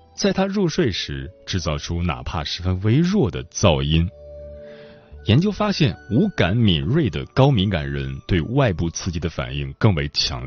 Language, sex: Chinese, male